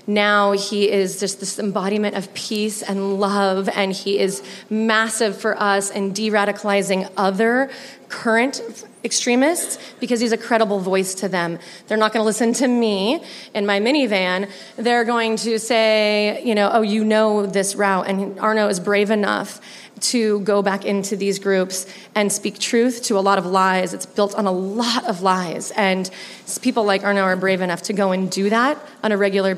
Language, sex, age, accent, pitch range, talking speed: English, female, 30-49, American, 190-220 Hz, 185 wpm